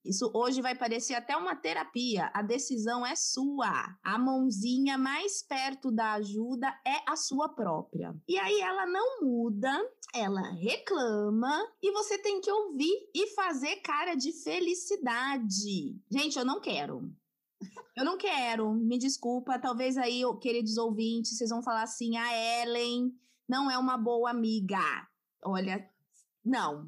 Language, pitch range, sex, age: Portuguese, 225-285 Hz, female, 20-39